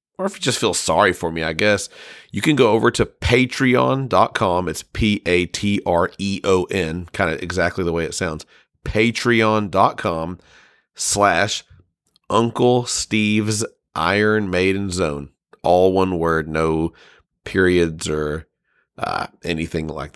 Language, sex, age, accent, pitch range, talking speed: English, male, 40-59, American, 85-110 Hz, 140 wpm